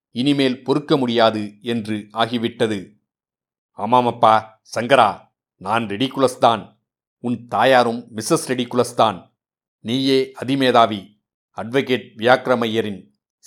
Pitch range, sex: 110-130 Hz, male